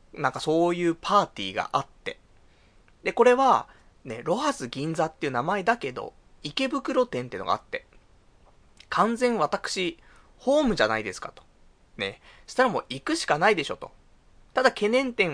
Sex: male